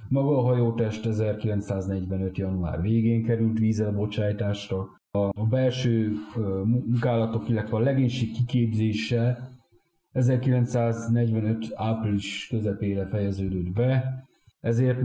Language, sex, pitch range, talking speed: Hungarian, male, 100-120 Hz, 85 wpm